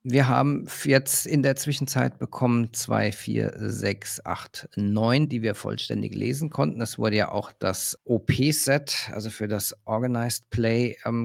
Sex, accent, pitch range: male, German, 100-130 Hz